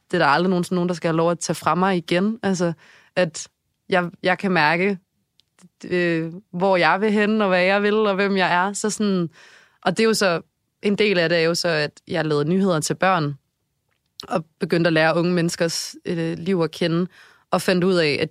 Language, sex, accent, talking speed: Danish, female, native, 235 wpm